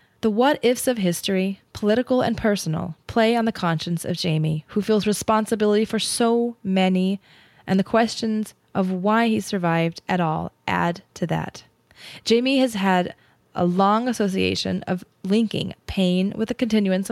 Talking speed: 150 wpm